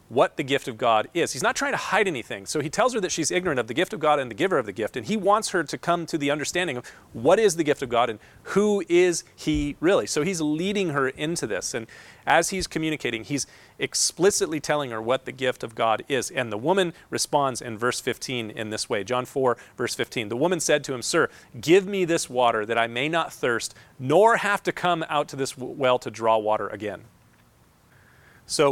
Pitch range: 120-155 Hz